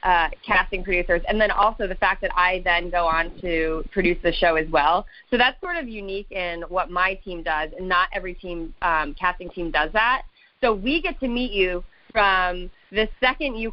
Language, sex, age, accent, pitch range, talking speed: English, female, 20-39, American, 185-250 Hz, 210 wpm